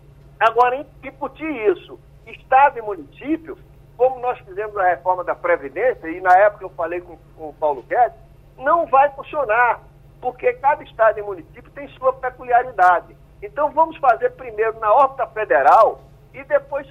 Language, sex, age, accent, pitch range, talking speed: Portuguese, male, 50-69, Brazilian, 195-275 Hz, 155 wpm